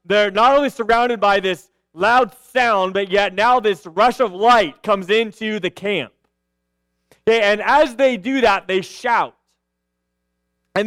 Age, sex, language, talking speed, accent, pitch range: 30-49, male, English, 155 wpm, American, 185-245 Hz